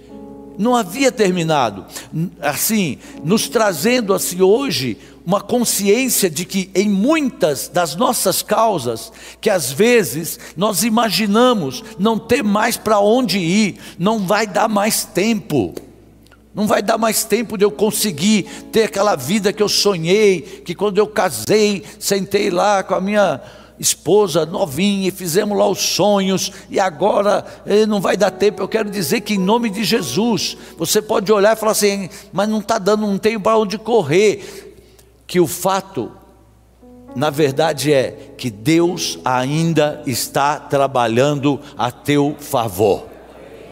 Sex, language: male, Portuguese